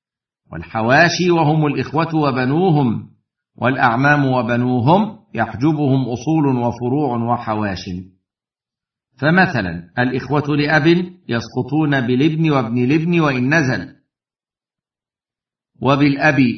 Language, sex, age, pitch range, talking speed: Arabic, male, 50-69, 120-150 Hz, 70 wpm